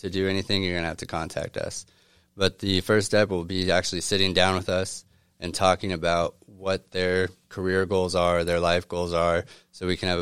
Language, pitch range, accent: English, 90-100 Hz, American